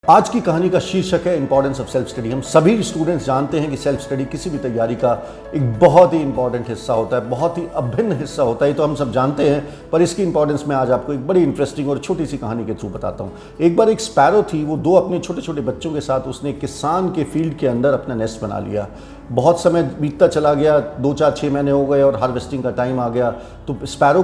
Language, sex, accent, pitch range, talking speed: Hindi, male, native, 120-150 Hz, 245 wpm